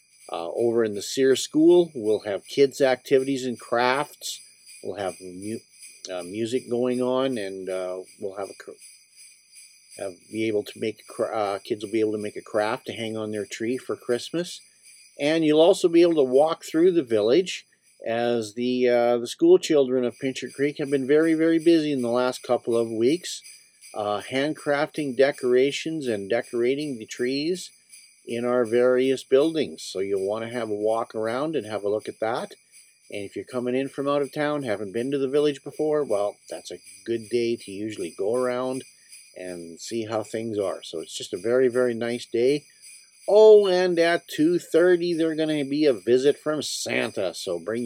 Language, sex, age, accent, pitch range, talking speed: English, male, 50-69, American, 115-155 Hz, 190 wpm